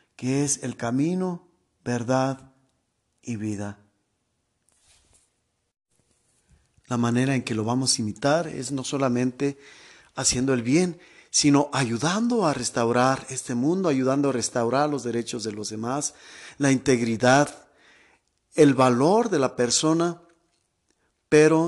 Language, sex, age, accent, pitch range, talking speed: Spanish, male, 50-69, Mexican, 115-140 Hz, 120 wpm